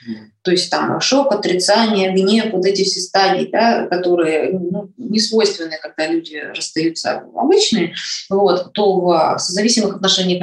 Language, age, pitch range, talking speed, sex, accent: Russian, 20-39, 180-205 Hz, 140 wpm, female, native